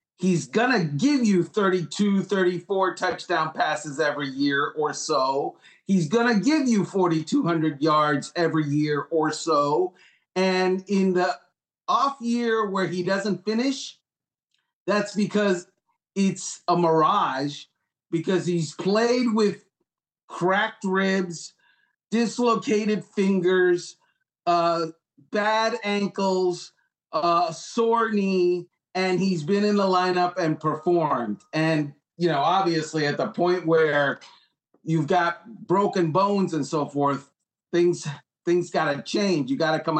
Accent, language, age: American, English, 40-59